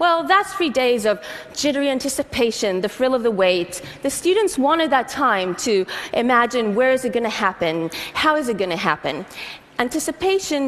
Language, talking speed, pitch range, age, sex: English, 180 wpm, 180-265 Hz, 30-49, female